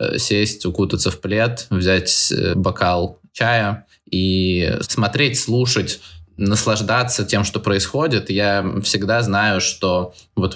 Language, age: Russian, 20-39